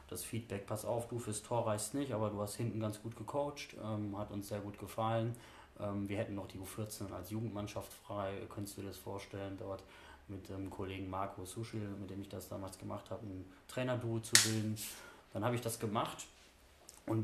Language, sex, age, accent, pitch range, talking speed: German, male, 20-39, German, 100-110 Hz, 205 wpm